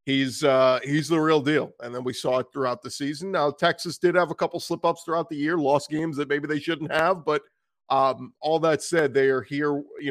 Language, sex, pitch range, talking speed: English, male, 135-155 Hz, 235 wpm